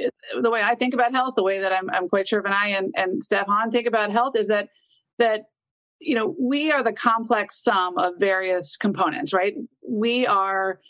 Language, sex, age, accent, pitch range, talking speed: English, female, 40-59, American, 195-255 Hz, 210 wpm